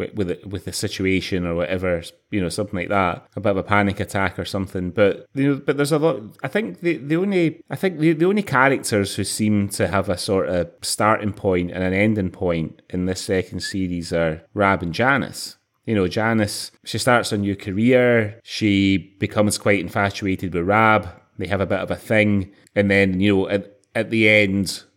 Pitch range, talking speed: 95-110 Hz, 210 wpm